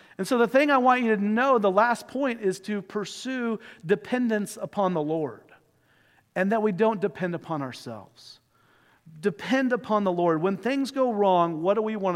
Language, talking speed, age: English, 190 wpm, 40-59